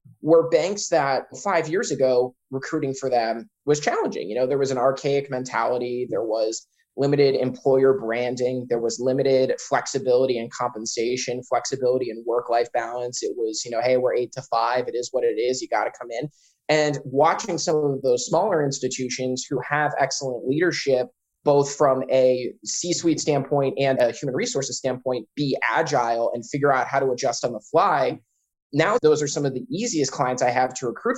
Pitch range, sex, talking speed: 125-150 Hz, male, 185 wpm